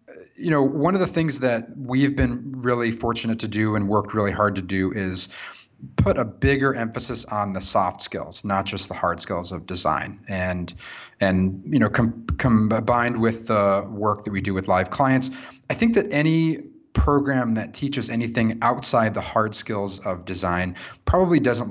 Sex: male